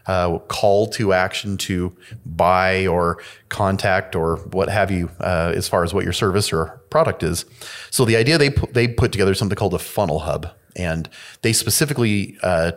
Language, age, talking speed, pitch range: English, 30-49, 185 wpm, 90-110 Hz